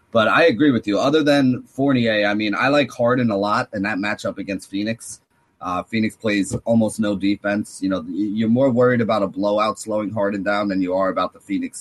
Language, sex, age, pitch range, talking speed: English, male, 30-49, 105-125 Hz, 220 wpm